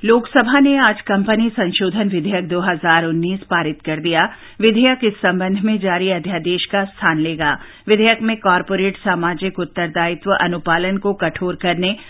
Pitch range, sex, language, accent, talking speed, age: 180-225 Hz, female, English, Indian, 140 wpm, 50-69